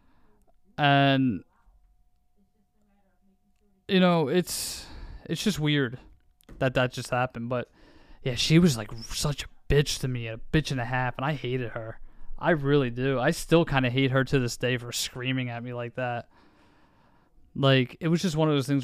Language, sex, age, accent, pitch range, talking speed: English, male, 20-39, American, 125-150 Hz, 180 wpm